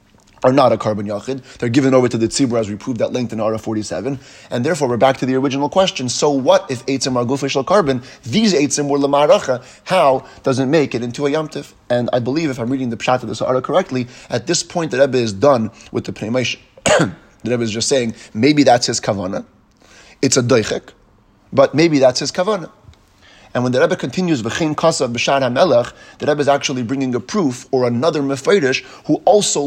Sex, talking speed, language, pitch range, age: male, 205 wpm, English, 110-140 Hz, 30-49